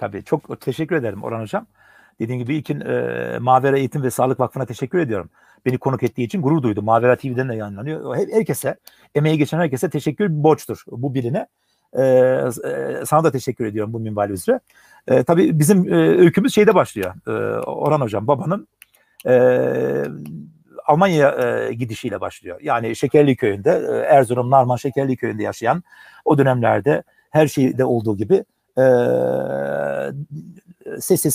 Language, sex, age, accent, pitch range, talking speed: Turkish, male, 60-79, native, 125-155 Hz, 140 wpm